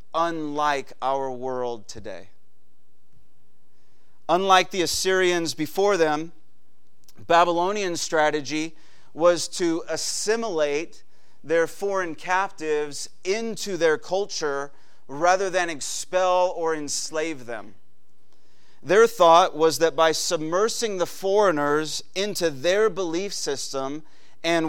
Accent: American